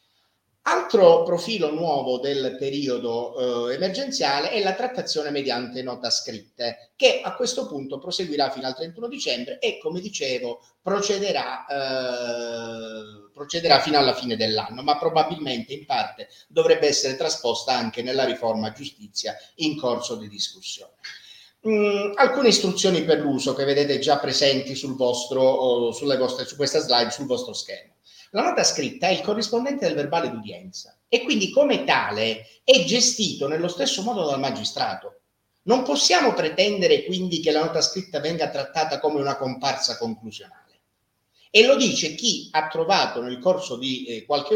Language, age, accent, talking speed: Italian, 30-49, native, 150 wpm